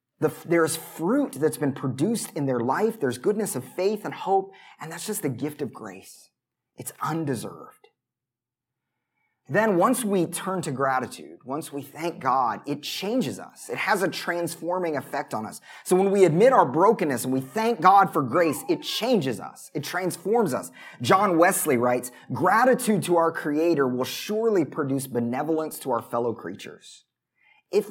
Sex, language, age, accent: male, English, 30-49, American